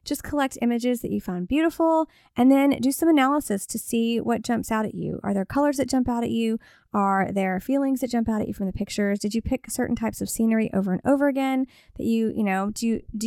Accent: American